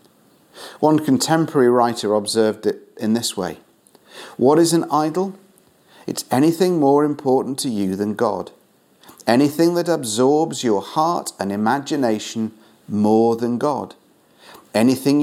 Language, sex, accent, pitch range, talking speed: English, male, British, 110-145 Hz, 120 wpm